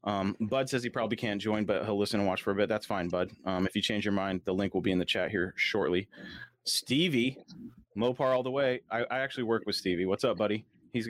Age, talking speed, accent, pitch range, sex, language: 30-49, 260 wpm, American, 100-125 Hz, male, English